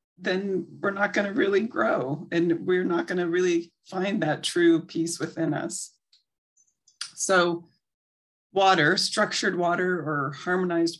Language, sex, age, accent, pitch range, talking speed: English, female, 40-59, American, 150-180 Hz, 125 wpm